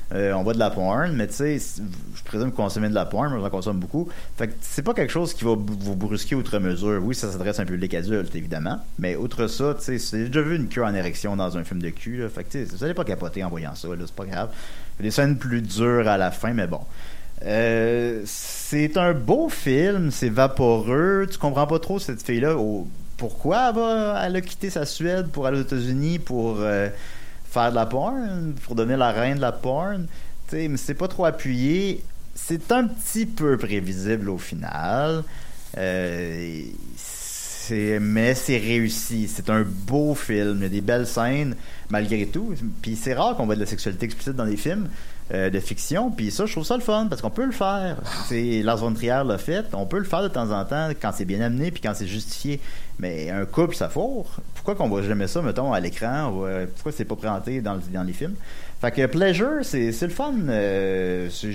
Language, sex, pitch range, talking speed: French, male, 105-150 Hz, 230 wpm